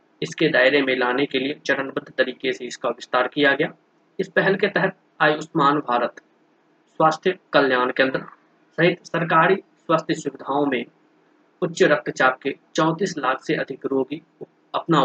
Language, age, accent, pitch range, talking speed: Hindi, 20-39, native, 135-165 Hz, 150 wpm